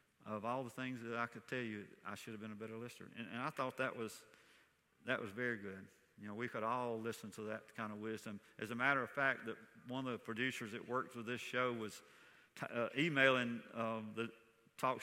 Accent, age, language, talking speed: American, 50-69, English, 235 wpm